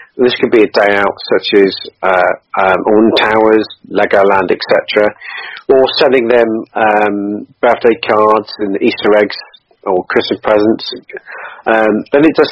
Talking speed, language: 145 wpm, English